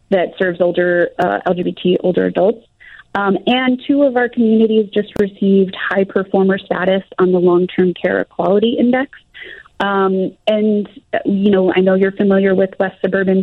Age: 30-49